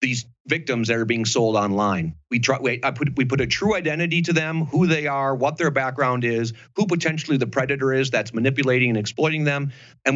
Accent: American